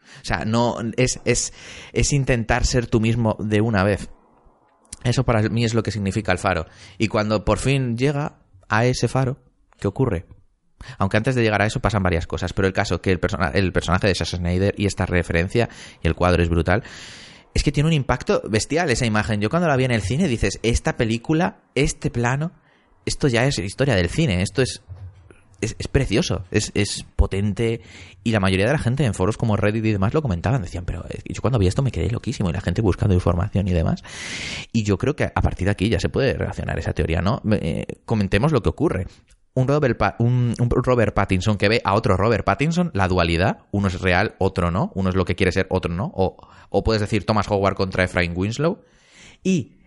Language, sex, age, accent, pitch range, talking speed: Spanish, male, 20-39, Spanish, 95-120 Hz, 220 wpm